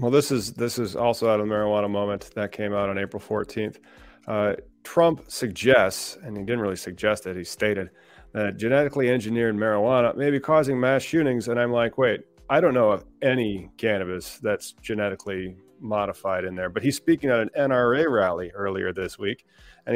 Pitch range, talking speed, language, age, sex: 100-120 Hz, 190 wpm, English, 40-59, male